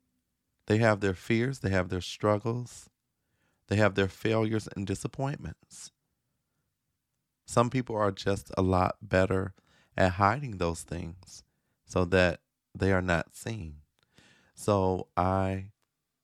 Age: 30-49